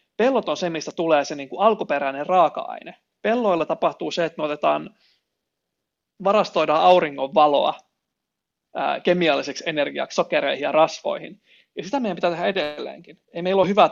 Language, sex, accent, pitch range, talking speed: Finnish, male, native, 155-205 Hz, 145 wpm